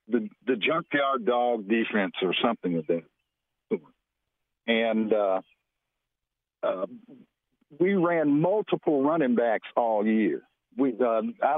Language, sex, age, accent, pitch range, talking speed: English, male, 50-69, American, 120-185 Hz, 120 wpm